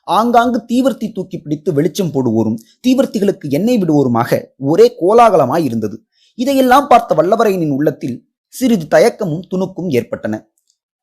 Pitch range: 145-240 Hz